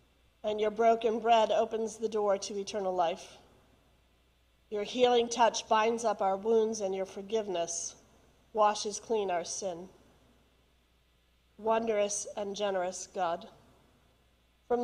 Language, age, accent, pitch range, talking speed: English, 40-59, American, 185-230 Hz, 115 wpm